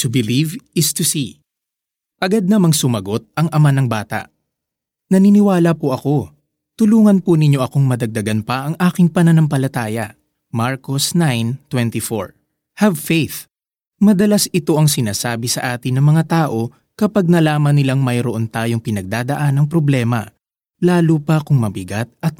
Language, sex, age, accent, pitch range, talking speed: Filipino, male, 20-39, native, 120-165 Hz, 135 wpm